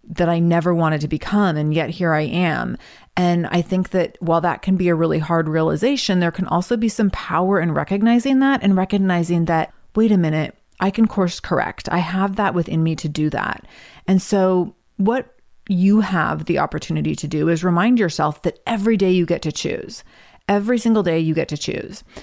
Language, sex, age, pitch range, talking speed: English, female, 30-49, 170-205 Hz, 205 wpm